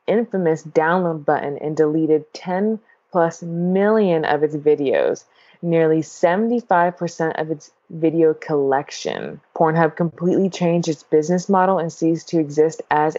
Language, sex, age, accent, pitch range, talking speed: English, female, 20-39, American, 155-175 Hz, 130 wpm